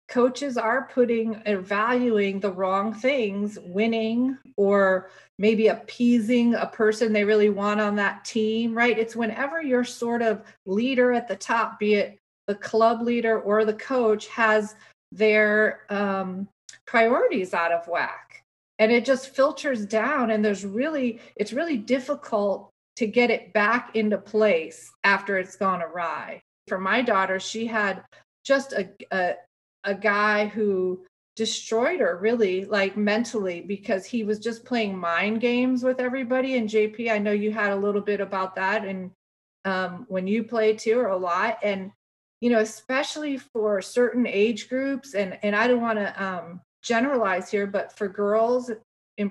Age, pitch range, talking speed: 40-59, 200-240 Hz, 160 wpm